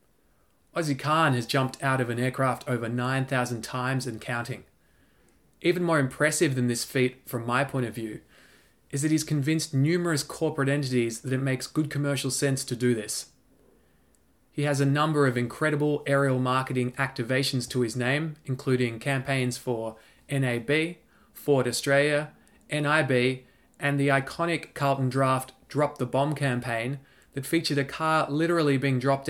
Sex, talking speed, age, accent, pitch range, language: male, 155 wpm, 20-39, Australian, 125-145 Hz, English